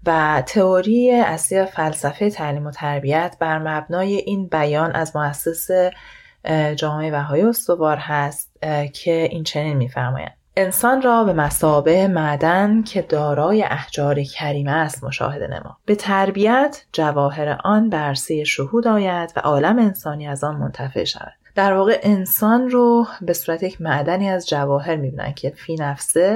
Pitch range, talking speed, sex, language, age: 145-185 Hz, 140 wpm, female, Persian, 30-49